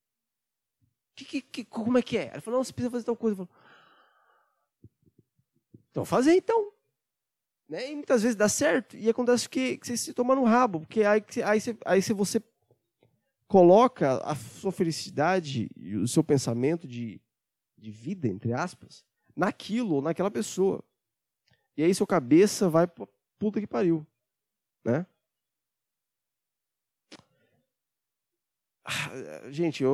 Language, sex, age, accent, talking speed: Portuguese, male, 20-39, Brazilian, 140 wpm